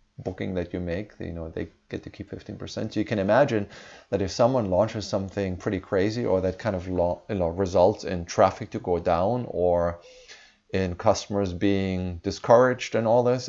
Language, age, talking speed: English, 30-49, 185 wpm